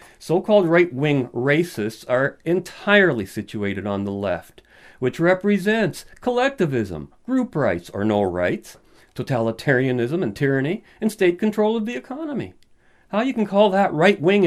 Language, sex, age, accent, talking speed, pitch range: English, male, 50-69, American, 135 wpm, 110-155 Hz